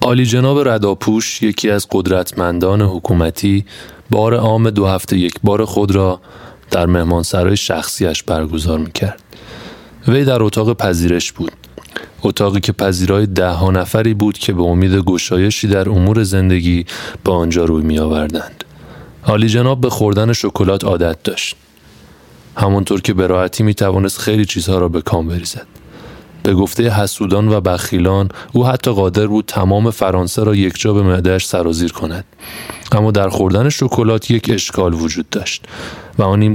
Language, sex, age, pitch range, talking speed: Persian, male, 30-49, 90-110 Hz, 145 wpm